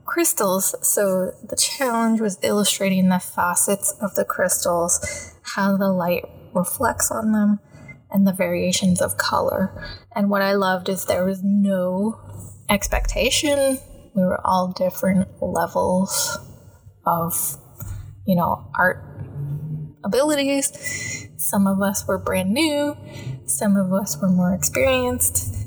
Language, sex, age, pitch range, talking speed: English, female, 20-39, 130-200 Hz, 125 wpm